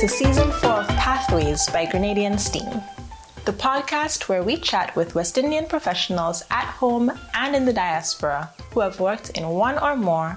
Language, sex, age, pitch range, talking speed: English, female, 20-39, 170-250 Hz, 175 wpm